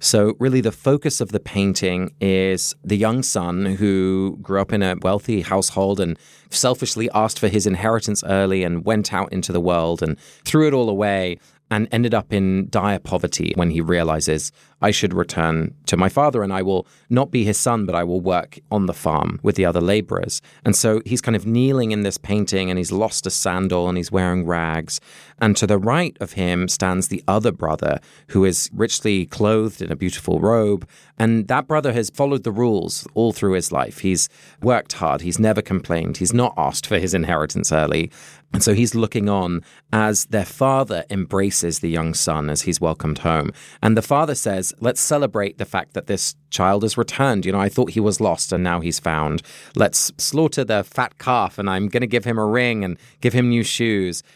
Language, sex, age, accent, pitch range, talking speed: English, male, 20-39, British, 95-120 Hz, 205 wpm